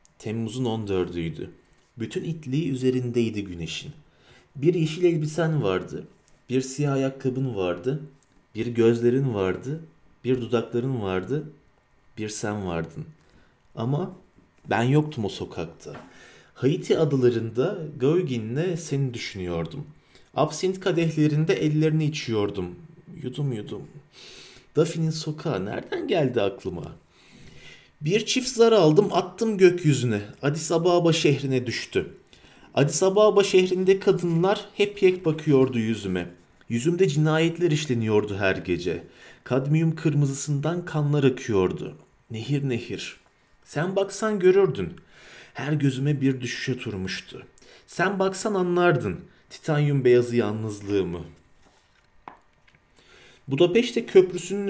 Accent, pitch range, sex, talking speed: native, 120-170 Hz, male, 100 wpm